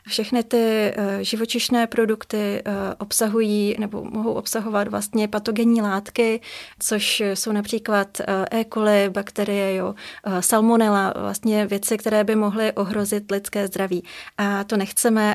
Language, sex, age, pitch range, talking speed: Czech, female, 30-49, 195-215 Hz, 110 wpm